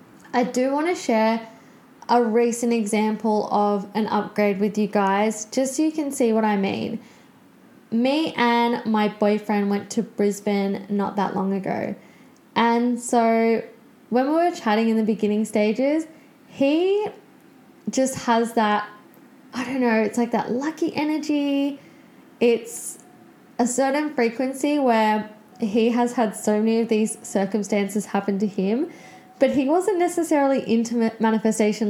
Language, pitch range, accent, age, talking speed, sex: English, 205-240 Hz, Australian, 10-29, 145 wpm, female